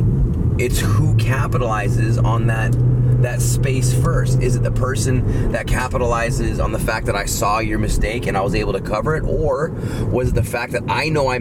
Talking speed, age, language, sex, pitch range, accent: 200 wpm, 30-49, English, male, 110-125 Hz, American